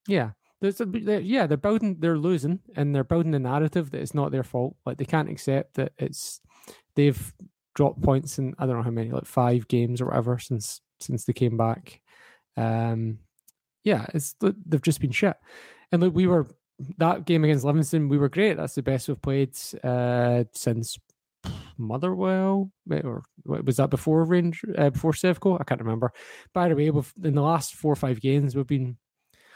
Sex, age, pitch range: male, 20-39, 130-165 Hz